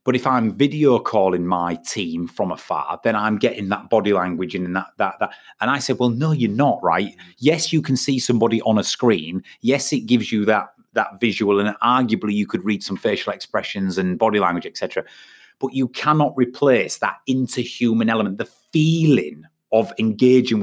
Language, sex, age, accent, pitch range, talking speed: English, male, 30-49, British, 100-135 Hz, 190 wpm